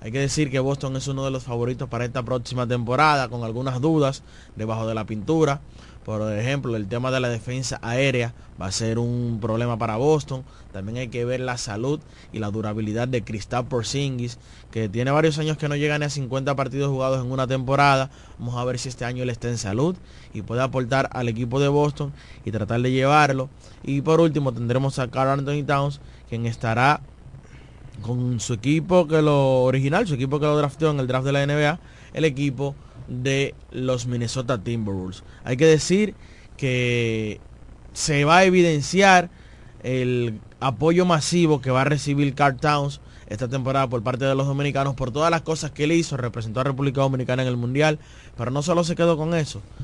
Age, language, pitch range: 20-39, Spanish, 120-145 Hz